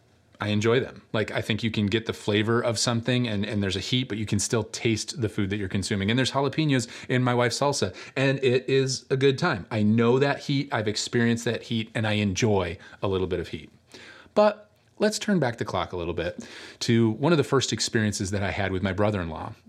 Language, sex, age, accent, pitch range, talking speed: English, male, 30-49, American, 105-130 Hz, 240 wpm